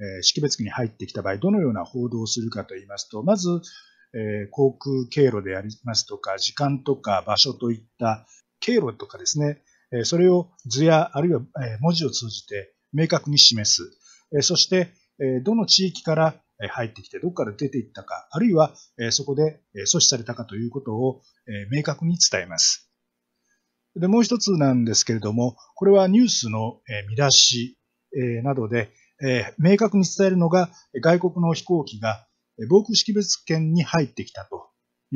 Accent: native